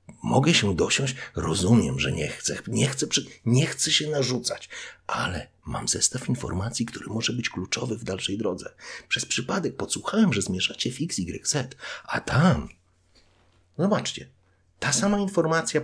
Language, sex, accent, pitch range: Polish, male, native, 95-135 Hz